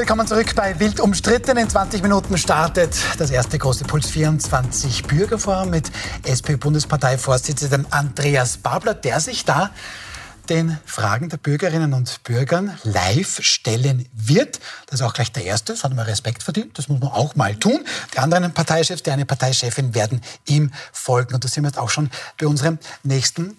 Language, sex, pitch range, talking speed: German, male, 130-170 Hz, 175 wpm